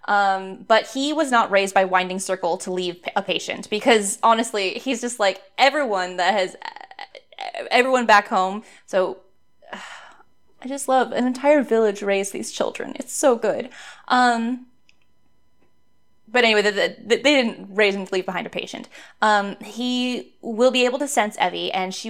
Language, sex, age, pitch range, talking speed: English, female, 20-39, 195-255 Hz, 160 wpm